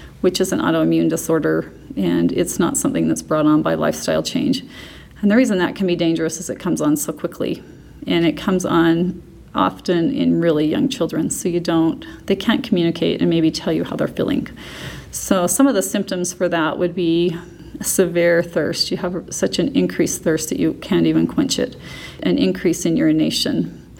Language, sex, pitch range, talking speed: English, female, 160-185 Hz, 195 wpm